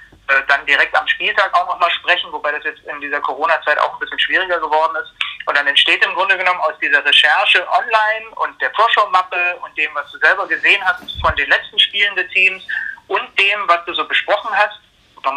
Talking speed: 205 wpm